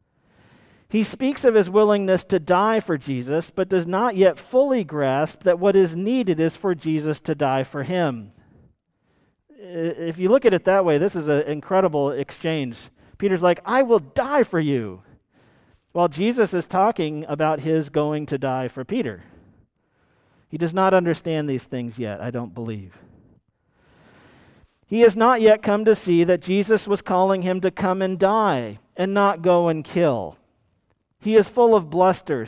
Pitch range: 150-195 Hz